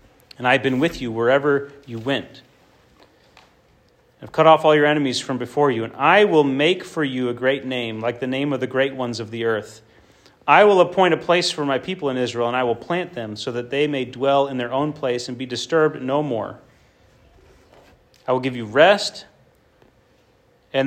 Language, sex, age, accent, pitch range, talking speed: English, male, 40-59, American, 125-180 Hz, 205 wpm